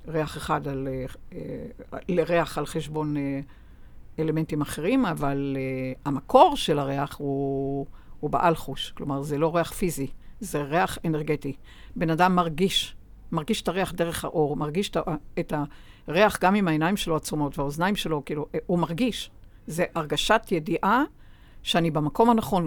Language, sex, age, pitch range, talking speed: Hebrew, female, 60-79, 150-205 Hz, 135 wpm